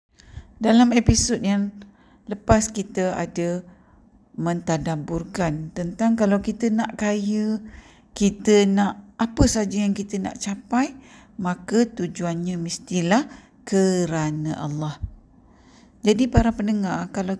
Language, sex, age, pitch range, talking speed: Malay, female, 50-69, 180-225 Hz, 100 wpm